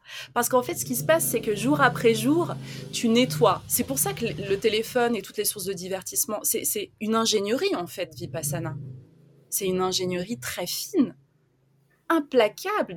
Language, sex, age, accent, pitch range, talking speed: French, female, 20-39, French, 185-260 Hz, 180 wpm